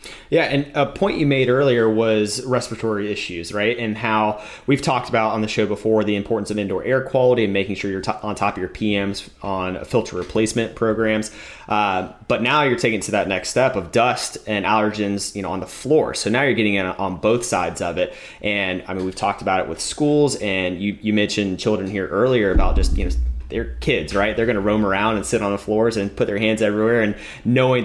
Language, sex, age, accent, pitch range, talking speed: English, male, 30-49, American, 95-110 Hz, 235 wpm